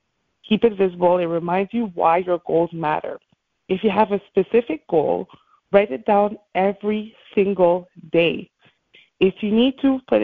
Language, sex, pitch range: English, female, 175-210 Hz